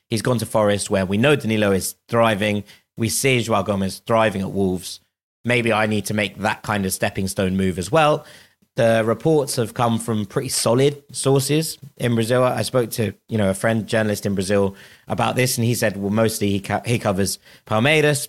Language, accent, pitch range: English, British, 100-115 Hz